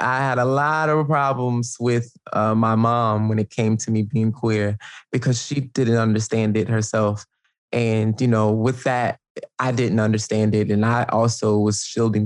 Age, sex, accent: 20-39, male, American